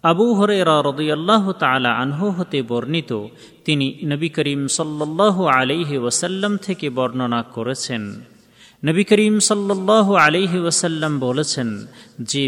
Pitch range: 125-165 Hz